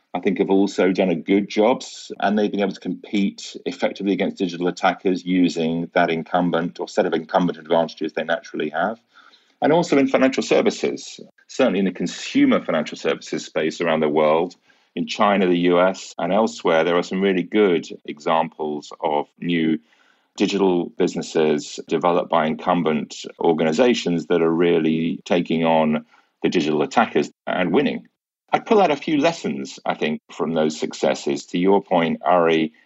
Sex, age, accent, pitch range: male, 40-59, British, 80-100 Hz